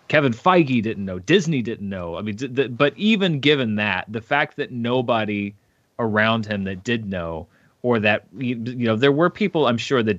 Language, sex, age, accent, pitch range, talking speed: English, male, 30-49, American, 100-130 Hz, 205 wpm